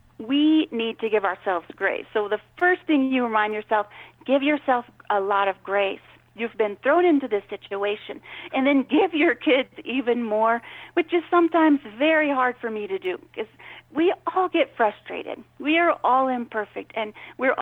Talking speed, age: 175 wpm, 40-59